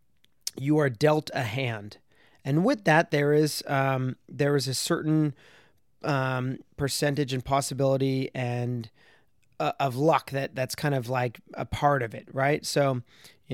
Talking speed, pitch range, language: 155 wpm, 130-155 Hz, English